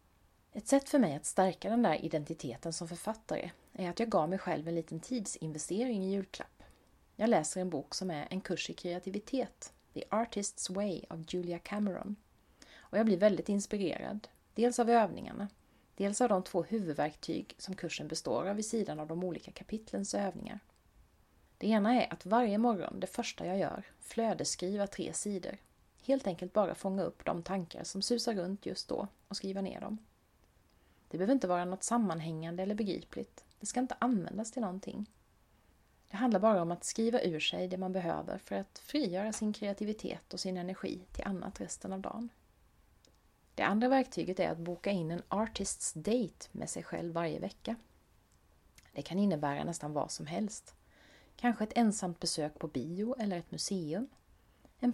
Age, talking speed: 30-49, 175 wpm